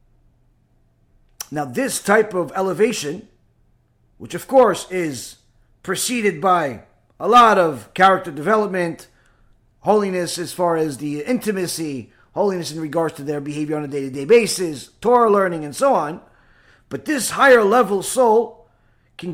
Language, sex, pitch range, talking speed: English, male, 145-215 Hz, 135 wpm